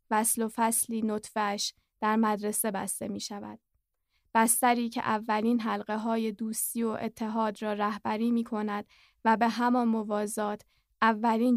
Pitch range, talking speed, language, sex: 215-235 Hz, 135 wpm, Persian, female